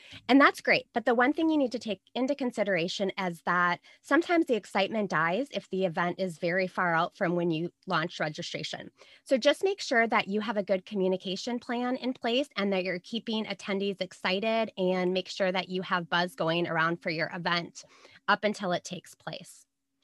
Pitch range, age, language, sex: 185-240 Hz, 20-39, English, female